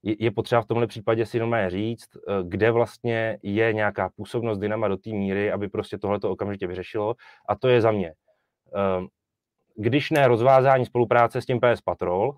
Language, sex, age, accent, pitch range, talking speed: Czech, male, 30-49, native, 105-120 Hz, 165 wpm